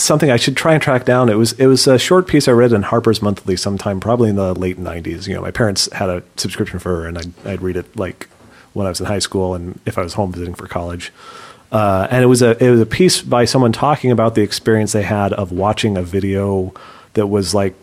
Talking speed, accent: 260 wpm, American